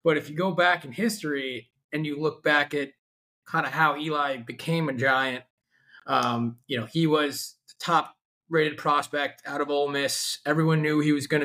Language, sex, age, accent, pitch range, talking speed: English, male, 20-39, American, 135-150 Hz, 195 wpm